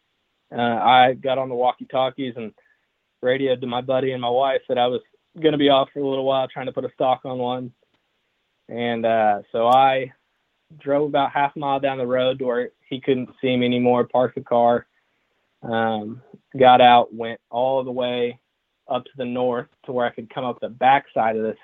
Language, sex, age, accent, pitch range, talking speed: English, male, 20-39, American, 115-130 Hz, 205 wpm